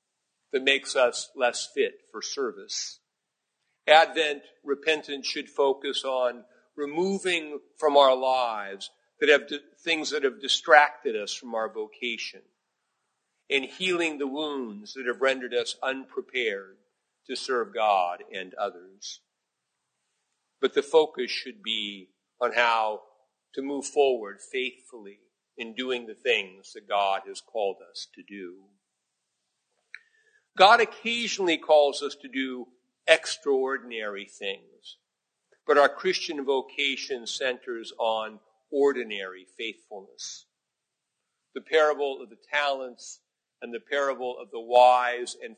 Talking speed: 120 wpm